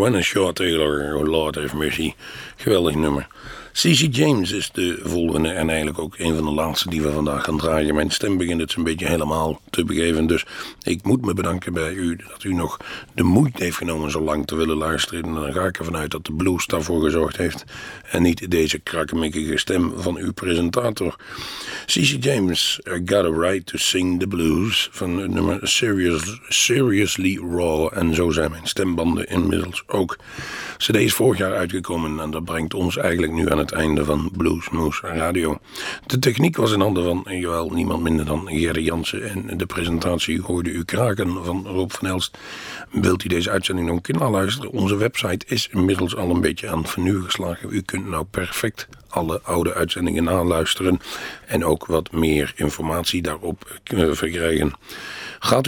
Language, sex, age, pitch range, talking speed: Dutch, male, 60-79, 80-95 Hz, 180 wpm